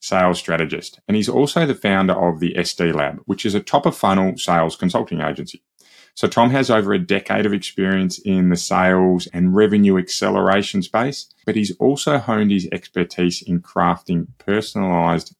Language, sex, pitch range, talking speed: English, male, 85-110 Hz, 170 wpm